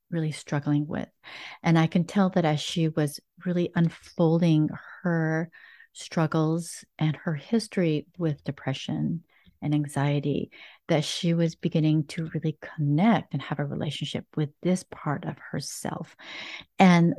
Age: 40-59